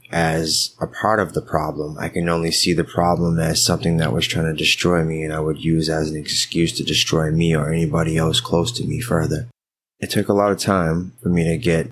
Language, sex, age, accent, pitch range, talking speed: English, male, 20-39, American, 80-95 Hz, 235 wpm